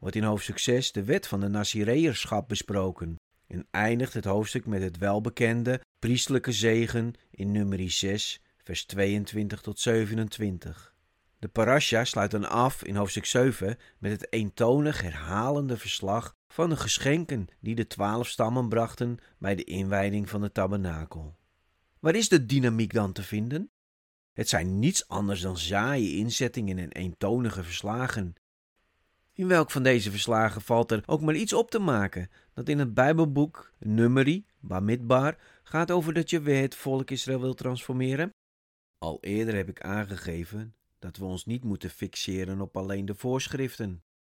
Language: Dutch